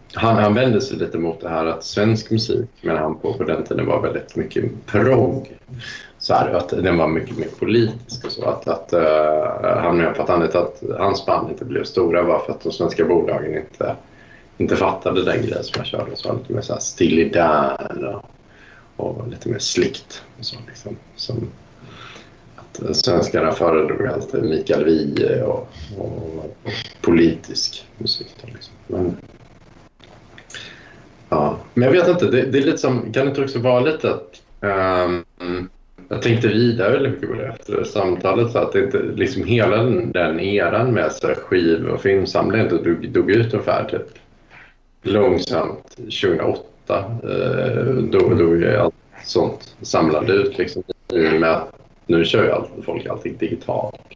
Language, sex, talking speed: Swedish, male, 165 wpm